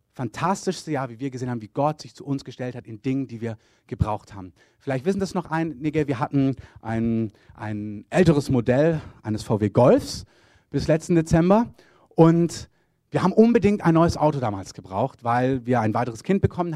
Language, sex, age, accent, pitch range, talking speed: German, male, 30-49, German, 125-170 Hz, 185 wpm